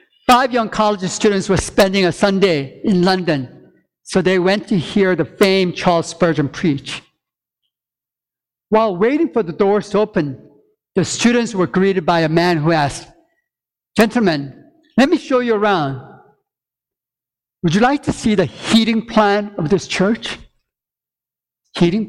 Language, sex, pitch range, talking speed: English, male, 160-210 Hz, 145 wpm